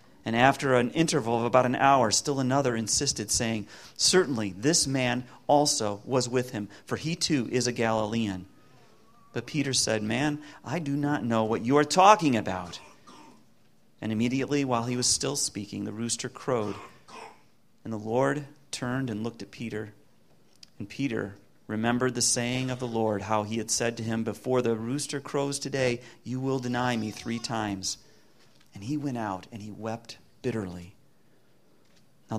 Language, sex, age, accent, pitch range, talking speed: English, male, 40-59, American, 110-140 Hz, 165 wpm